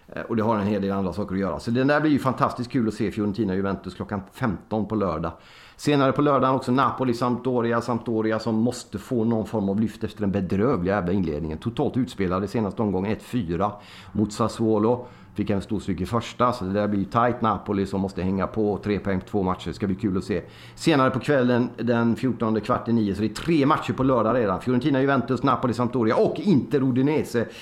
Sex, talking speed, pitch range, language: male, 210 wpm, 100-125 Hz, Swedish